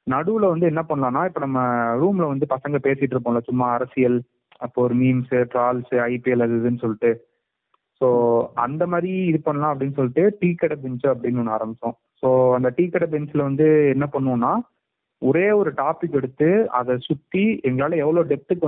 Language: Tamil